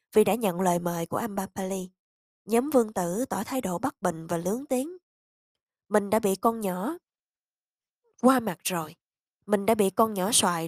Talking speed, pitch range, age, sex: 180 wpm, 190-240 Hz, 20-39, female